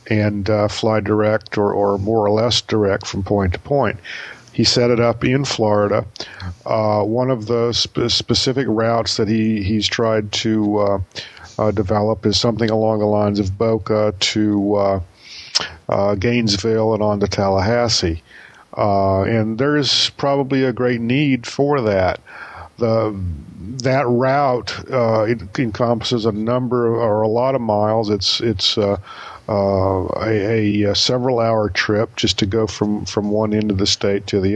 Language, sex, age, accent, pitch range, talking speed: English, male, 50-69, American, 105-120 Hz, 165 wpm